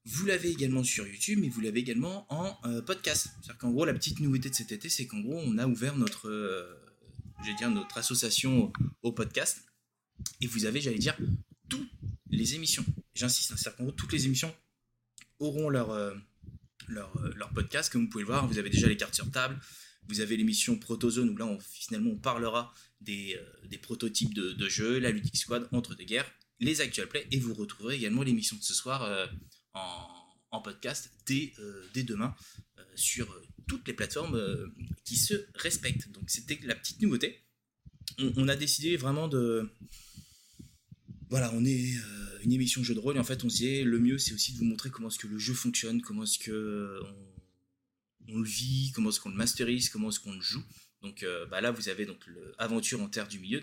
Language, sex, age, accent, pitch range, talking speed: French, male, 20-39, French, 110-140 Hz, 215 wpm